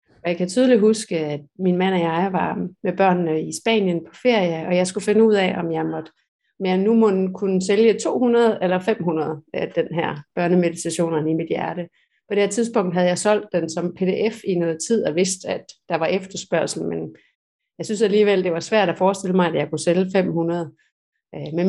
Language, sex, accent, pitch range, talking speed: Danish, female, native, 175-205 Hz, 215 wpm